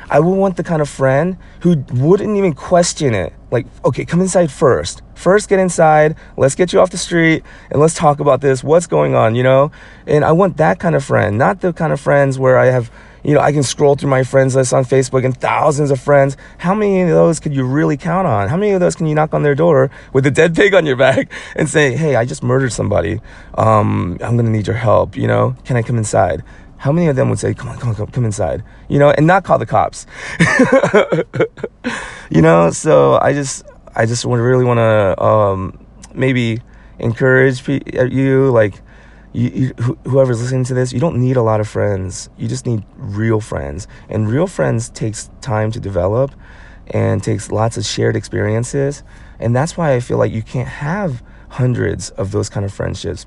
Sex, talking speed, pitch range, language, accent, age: male, 215 wpm, 110-150 Hz, English, American, 30-49